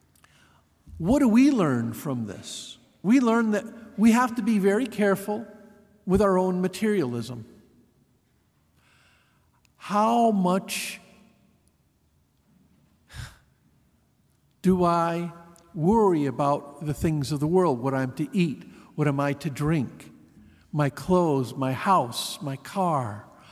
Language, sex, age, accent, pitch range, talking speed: English, male, 50-69, American, 150-210 Hz, 115 wpm